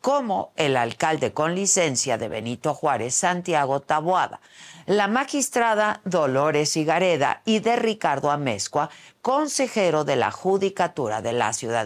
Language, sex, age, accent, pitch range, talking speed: Spanish, female, 50-69, Mexican, 135-215 Hz, 125 wpm